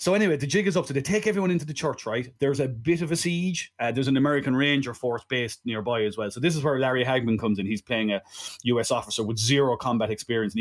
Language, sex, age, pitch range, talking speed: English, male, 30-49, 110-145 Hz, 270 wpm